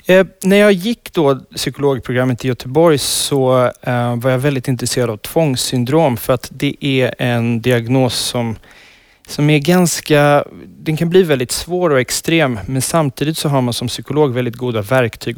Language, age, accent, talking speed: Swedish, 30-49, native, 160 wpm